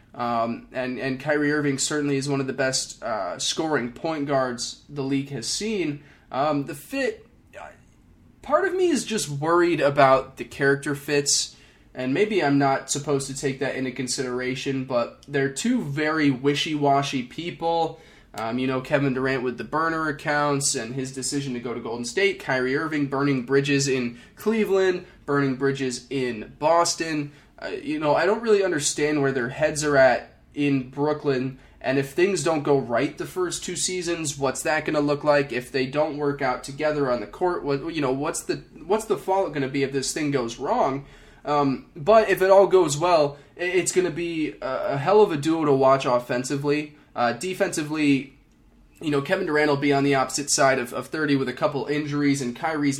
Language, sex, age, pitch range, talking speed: English, male, 20-39, 135-155 Hz, 190 wpm